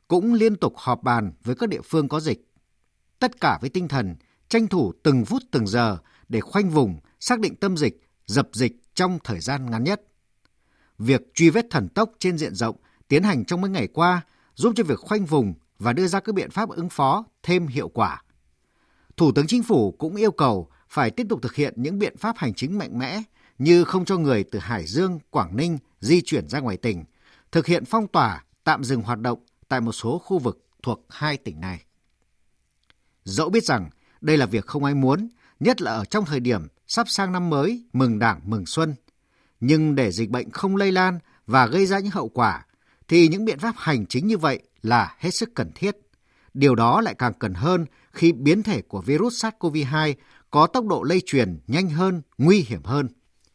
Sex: male